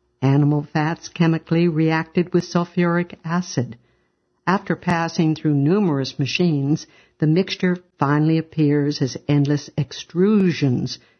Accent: American